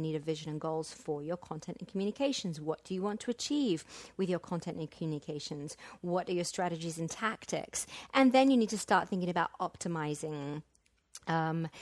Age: 40-59